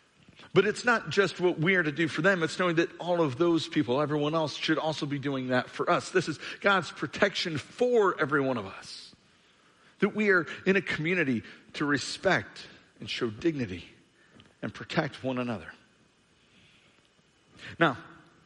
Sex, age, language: male, 50-69, English